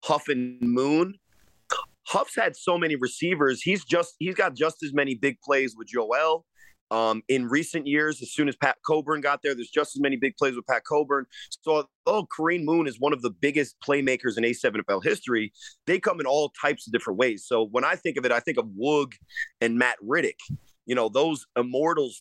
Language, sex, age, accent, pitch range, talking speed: English, male, 30-49, American, 125-165 Hz, 210 wpm